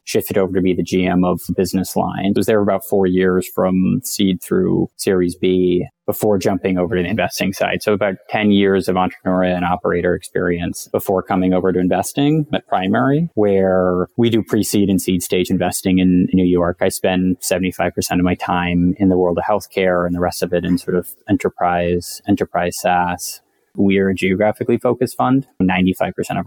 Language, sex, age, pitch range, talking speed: English, male, 20-39, 90-100 Hz, 195 wpm